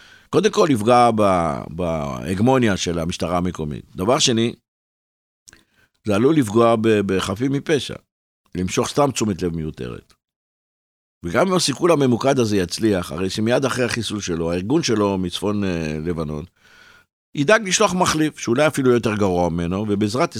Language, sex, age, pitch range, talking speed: Hebrew, male, 60-79, 85-130 Hz, 125 wpm